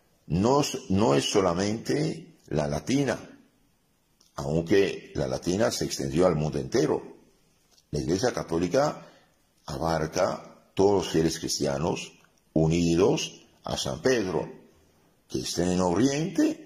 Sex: male